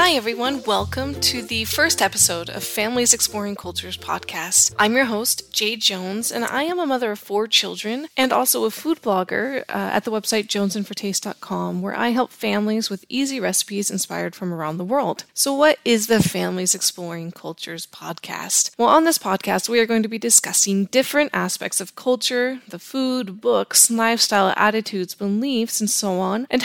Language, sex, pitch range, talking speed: English, female, 195-250 Hz, 180 wpm